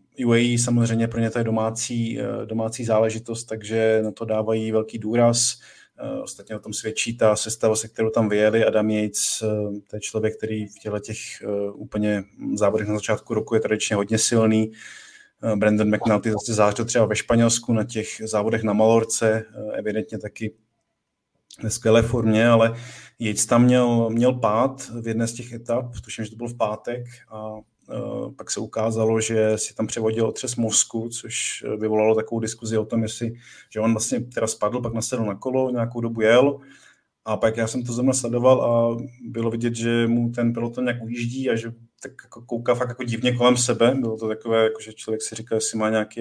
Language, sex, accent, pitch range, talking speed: Czech, male, native, 110-120 Hz, 185 wpm